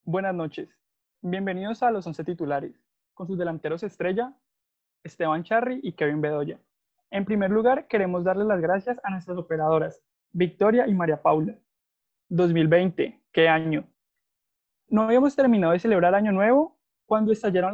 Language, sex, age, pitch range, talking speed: Spanish, male, 20-39, 175-245 Hz, 140 wpm